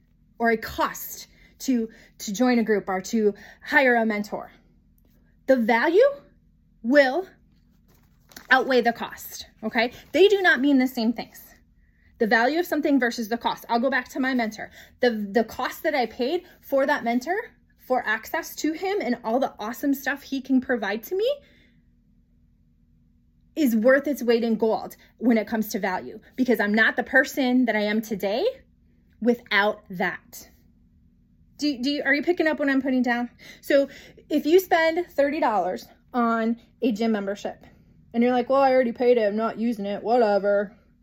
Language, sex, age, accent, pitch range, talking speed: English, female, 20-39, American, 220-275 Hz, 175 wpm